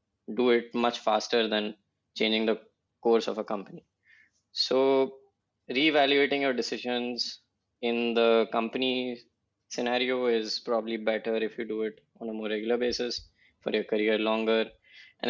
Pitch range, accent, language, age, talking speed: 110-120 Hz, Indian, English, 20-39, 140 wpm